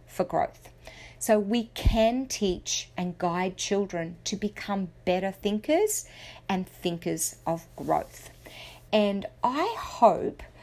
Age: 40-59